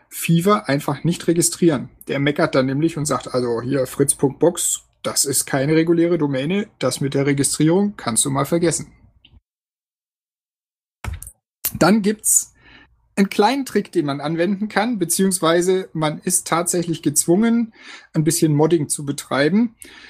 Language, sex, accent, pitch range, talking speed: German, male, German, 145-180 Hz, 135 wpm